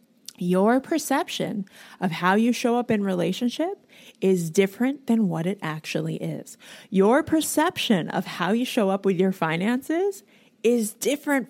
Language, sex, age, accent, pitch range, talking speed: English, female, 30-49, American, 185-245 Hz, 145 wpm